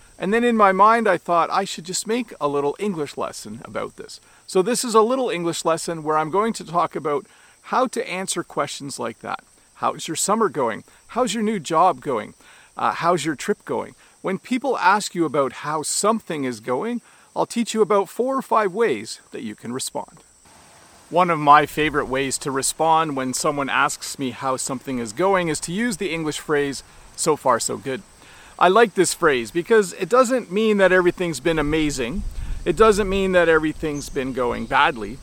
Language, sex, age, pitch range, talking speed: English, male, 40-59, 150-210 Hz, 200 wpm